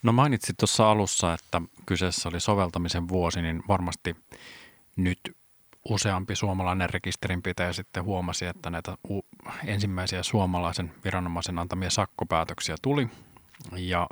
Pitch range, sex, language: 85-105 Hz, male, Finnish